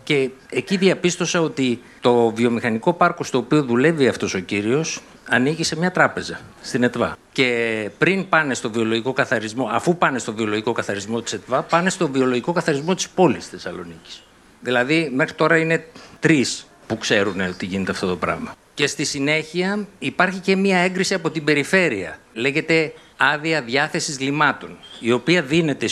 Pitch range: 125-185 Hz